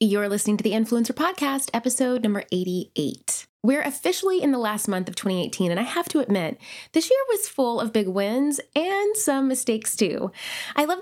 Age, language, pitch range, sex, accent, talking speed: 20-39, English, 185-260 Hz, female, American, 190 wpm